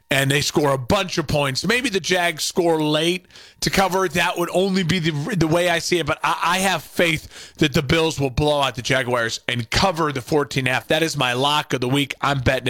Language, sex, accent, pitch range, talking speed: English, male, American, 135-190 Hz, 250 wpm